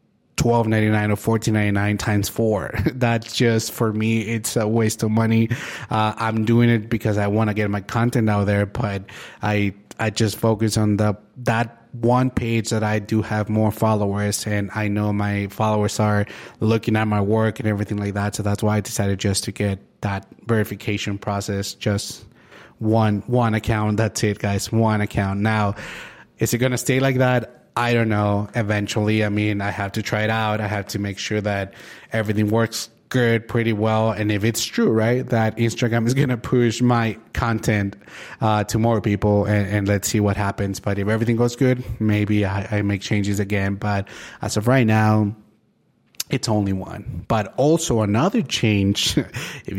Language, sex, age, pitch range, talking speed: Spanish, male, 30-49, 105-115 Hz, 185 wpm